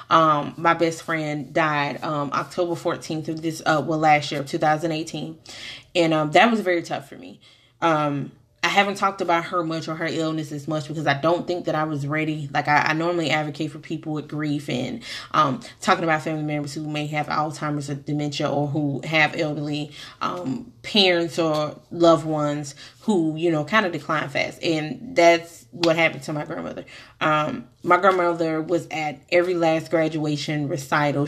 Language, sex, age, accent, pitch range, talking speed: English, female, 20-39, American, 150-170 Hz, 185 wpm